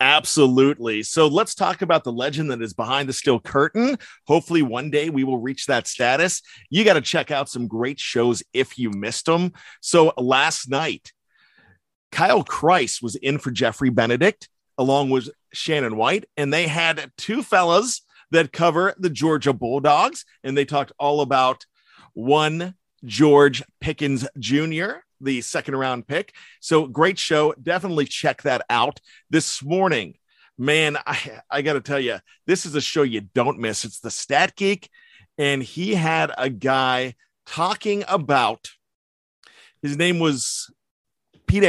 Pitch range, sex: 130-170 Hz, male